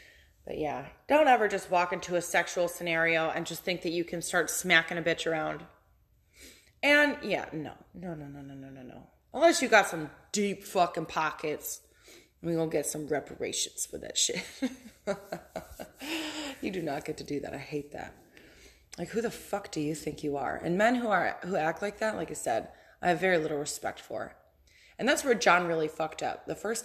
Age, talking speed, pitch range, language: 20-39, 205 wpm, 155-195 Hz, English